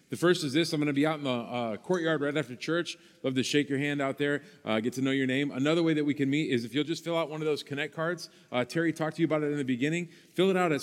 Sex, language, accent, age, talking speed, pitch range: male, English, American, 40-59, 330 wpm, 140-170 Hz